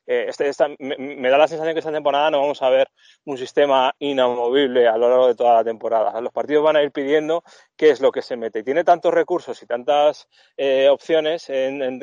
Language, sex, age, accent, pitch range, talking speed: Spanish, male, 20-39, Spanish, 130-175 Hz, 235 wpm